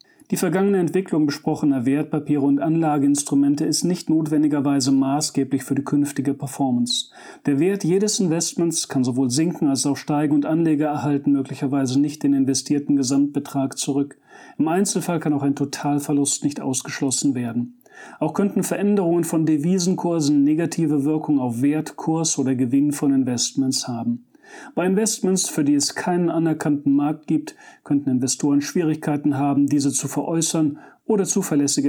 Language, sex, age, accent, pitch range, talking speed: German, male, 40-59, German, 140-165 Hz, 145 wpm